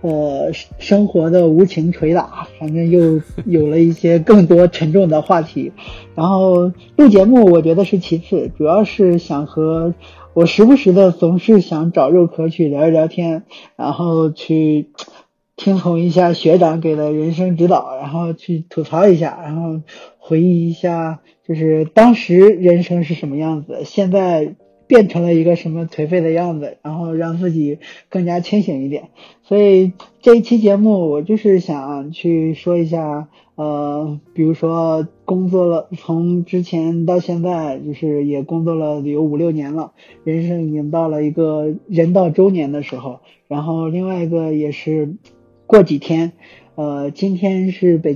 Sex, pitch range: male, 155-180 Hz